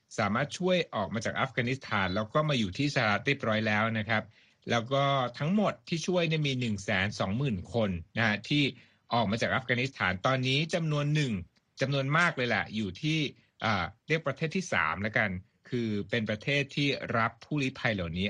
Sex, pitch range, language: male, 105-145 Hz, Thai